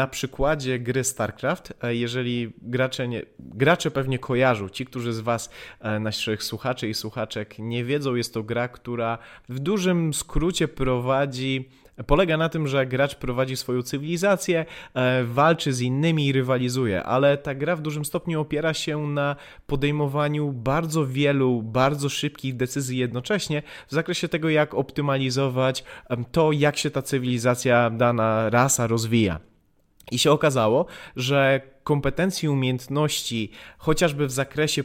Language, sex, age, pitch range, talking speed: Polish, male, 30-49, 125-155 Hz, 135 wpm